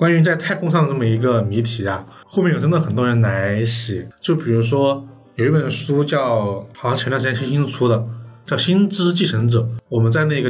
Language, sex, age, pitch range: Chinese, male, 20-39, 115-150 Hz